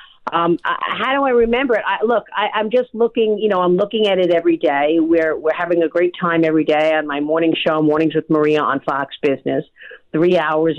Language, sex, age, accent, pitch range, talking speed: English, female, 50-69, American, 160-220 Hz, 235 wpm